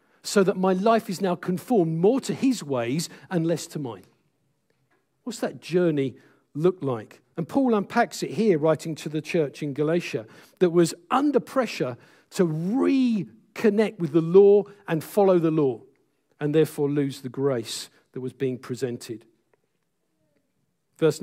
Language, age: English, 50-69